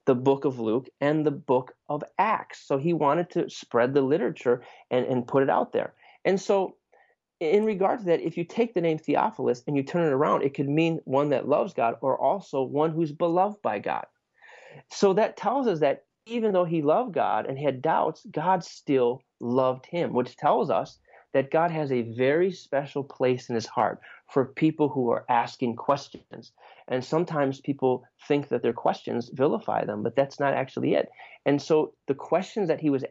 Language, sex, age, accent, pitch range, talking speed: English, male, 30-49, American, 125-155 Hz, 200 wpm